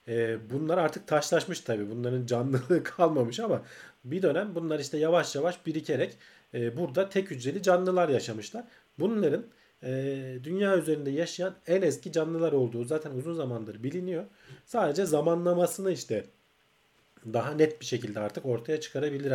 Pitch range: 120-150 Hz